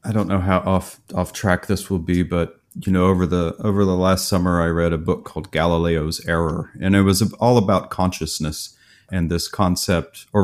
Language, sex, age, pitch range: English, male, 40-59, 85-105 Hz